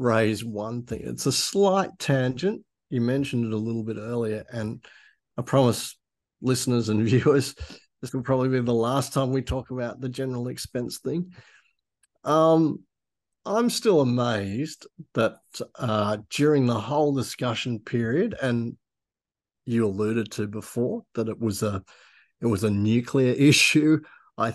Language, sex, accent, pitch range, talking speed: English, male, Australian, 115-135 Hz, 145 wpm